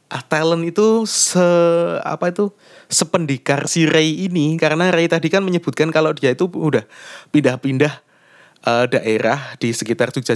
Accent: native